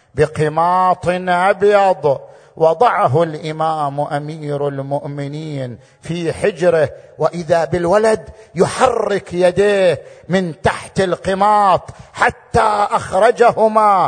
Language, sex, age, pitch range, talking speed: Arabic, male, 50-69, 175-230 Hz, 70 wpm